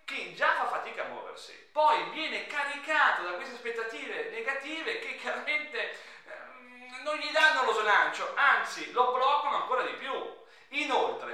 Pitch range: 215-295 Hz